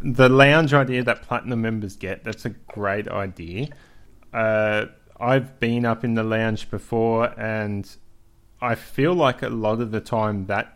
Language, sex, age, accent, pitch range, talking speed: English, male, 20-39, Australian, 100-120 Hz, 160 wpm